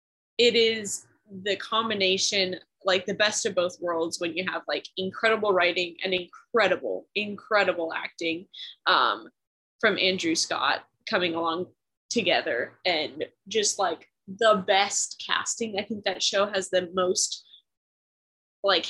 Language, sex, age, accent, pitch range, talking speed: English, female, 10-29, American, 175-215 Hz, 130 wpm